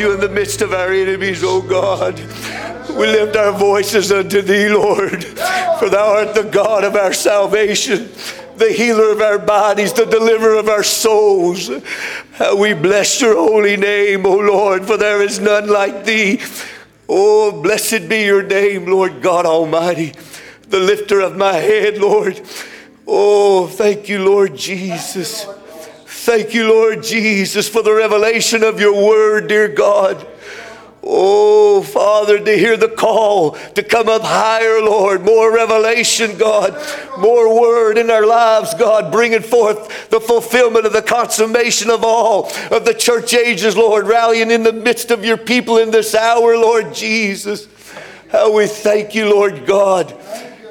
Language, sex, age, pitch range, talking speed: English, male, 60-79, 200-225 Hz, 155 wpm